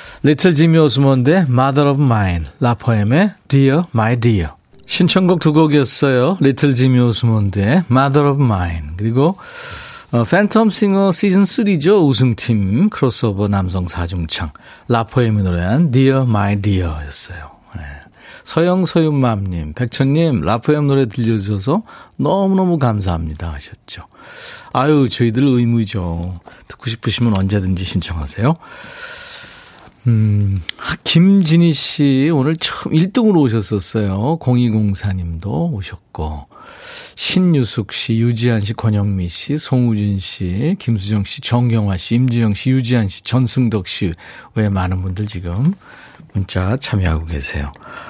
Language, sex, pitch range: Korean, male, 100-150 Hz